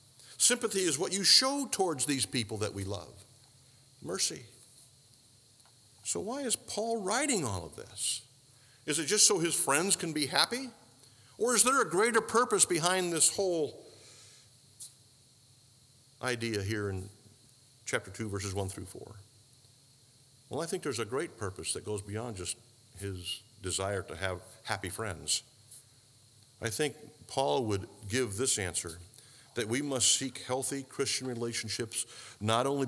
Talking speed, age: 145 wpm, 50-69